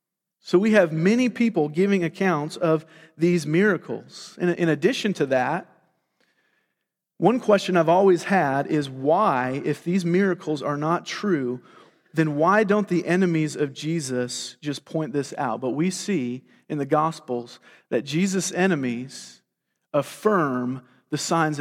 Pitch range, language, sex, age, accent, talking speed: 140-180 Hz, English, male, 40-59, American, 140 wpm